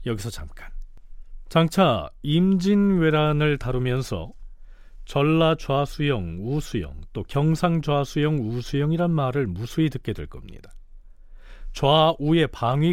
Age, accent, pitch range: 40-59, native, 100-160 Hz